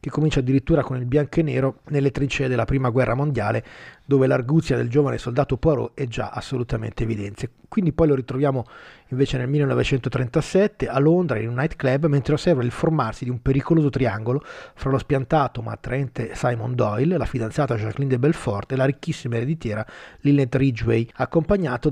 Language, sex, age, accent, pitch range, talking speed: Italian, male, 30-49, native, 115-145 Hz, 175 wpm